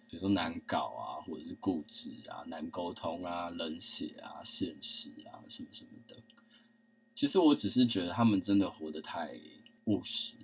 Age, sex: 20-39, male